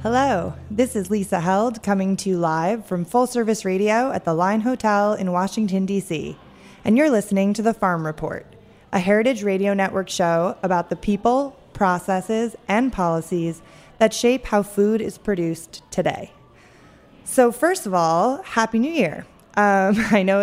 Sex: female